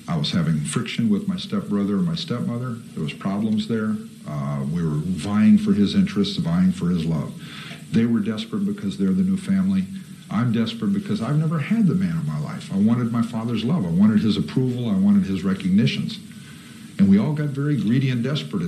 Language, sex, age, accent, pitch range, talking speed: English, male, 50-69, American, 165-200 Hz, 210 wpm